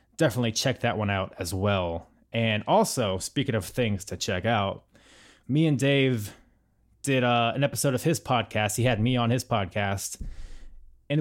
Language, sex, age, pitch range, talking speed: English, male, 20-39, 100-135 Hz, 170 wpm